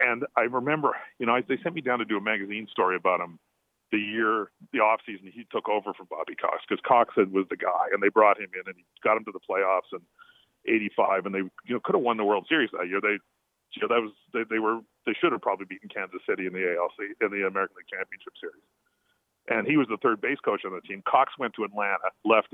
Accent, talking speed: American, 260 wpm